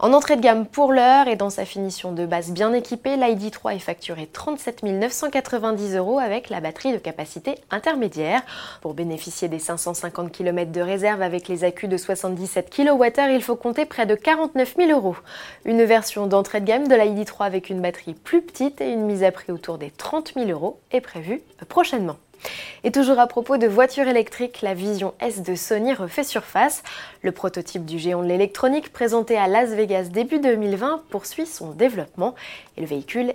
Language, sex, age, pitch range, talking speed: French, female, 20-39, 185-255 Hz, 185 wpm